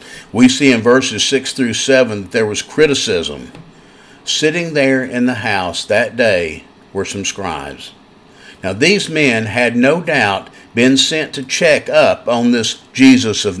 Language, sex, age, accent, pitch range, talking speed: English, male, 50-69, American, 115-145 Hz, 160 wpm